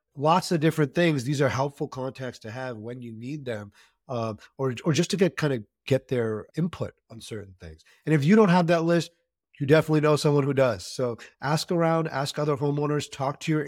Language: English